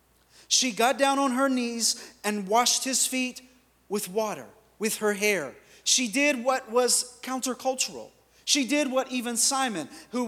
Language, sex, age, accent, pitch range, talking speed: English, male, 30-49, American, 170-245 Hz, 150 wpm